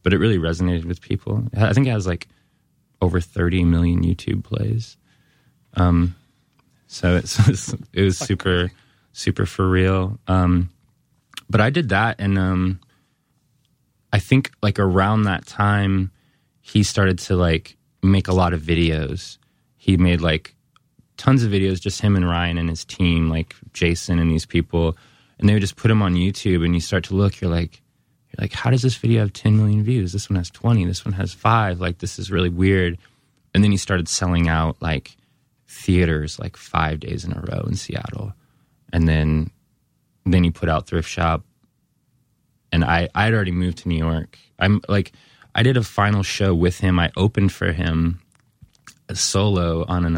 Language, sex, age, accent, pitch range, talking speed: English, male, 20-39, American, 85-105 Hz, 180 wpm